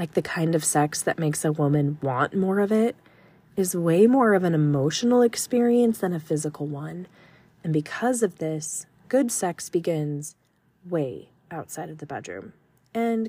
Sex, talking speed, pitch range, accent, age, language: female, 165 wpm, 155-195 Hz, American, 30-49, English